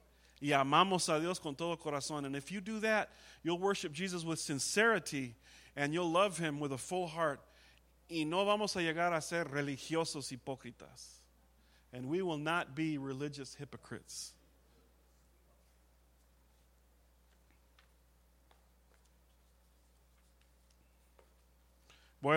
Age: 40-59